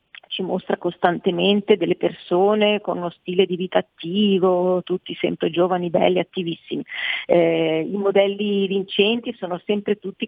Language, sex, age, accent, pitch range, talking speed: Italian, female, 40-59, native, 175-205 Hz, 130 wpm